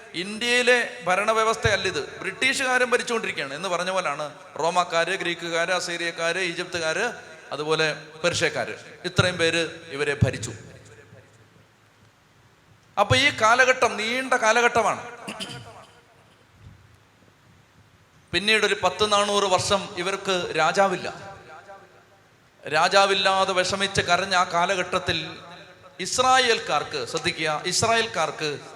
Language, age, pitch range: Malayalam, 30-49, 155-230 Hz